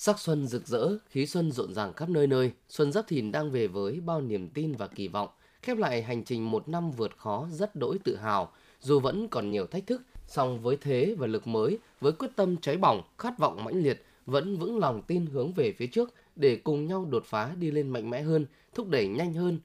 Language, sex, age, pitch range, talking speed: Vietnamese, male, 20-39, 125-190 Hz, 240 wpm